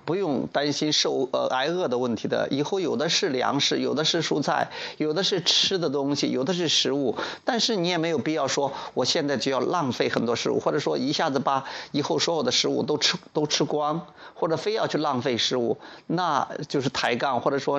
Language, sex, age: Chinese, male, 30-49